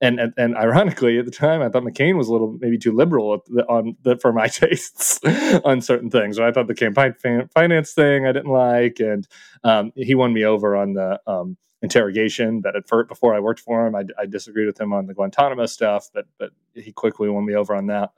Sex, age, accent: male, 30-49, American